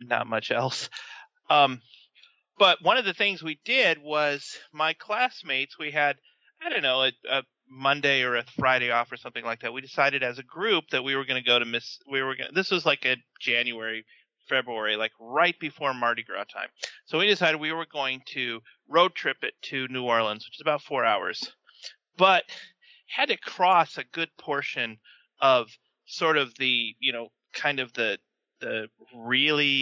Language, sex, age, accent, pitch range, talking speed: English, male, 30-49, American, 120-145 Hz, 190 wpm